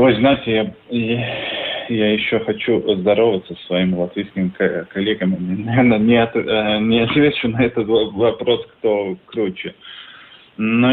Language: Russian